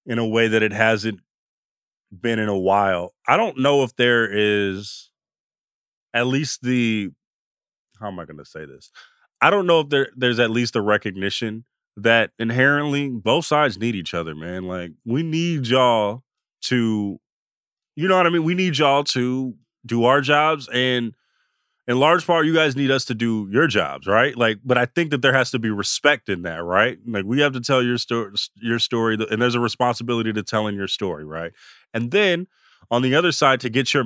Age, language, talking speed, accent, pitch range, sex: 30-49, English, 200 wpm, American, 110-140 Hz, male